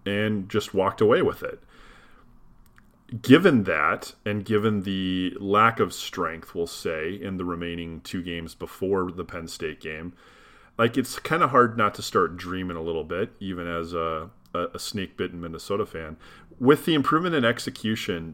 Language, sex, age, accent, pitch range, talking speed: English, male, 30-49, American, 85-110 Hz, 165 wpm